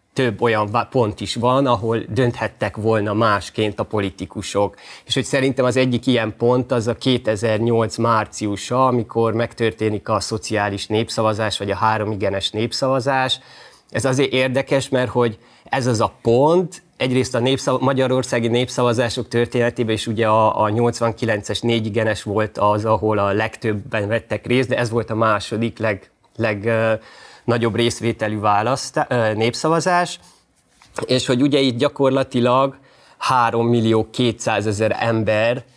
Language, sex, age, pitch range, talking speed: Hungarian, male, 30-49, 110-130 Hz, 130 wpm